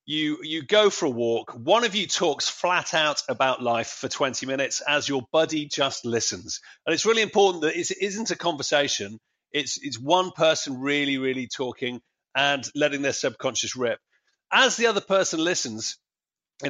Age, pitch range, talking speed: 30-49, 140-185 Hz, 175 wpm